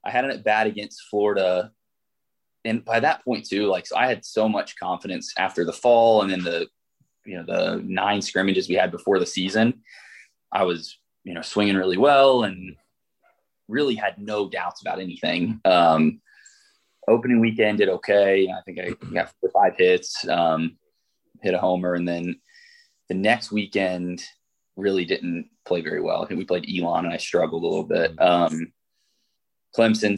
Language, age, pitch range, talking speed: English, 20-39, 90-140 Hz, 170 wpm